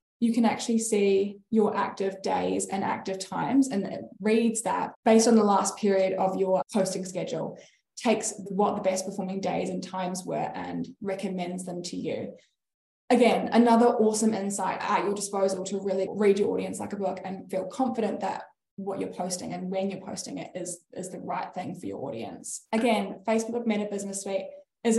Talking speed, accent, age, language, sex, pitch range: 185 wpm, Australian, 10-29, English, female, 190-230 Hz